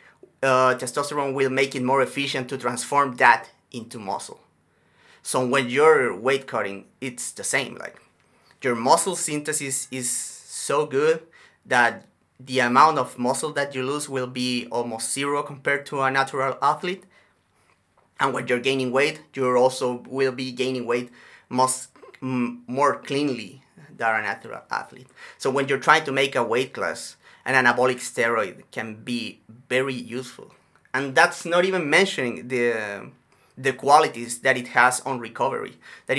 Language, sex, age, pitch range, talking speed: English, male, 30-49, 120-140 Hz, 155 wpm